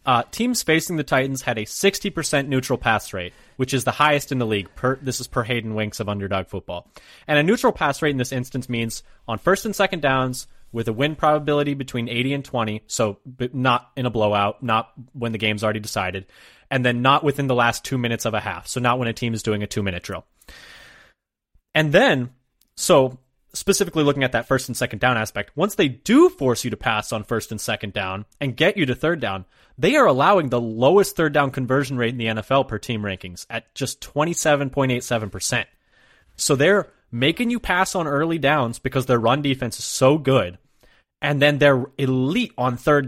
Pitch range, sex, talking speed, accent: 120-160 Hz, male, 210 wpm, American